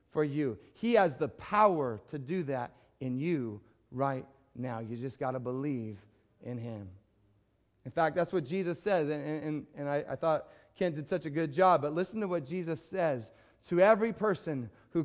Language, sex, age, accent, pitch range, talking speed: English, male, 30-49, American, 125-185 Hz, 190 wpm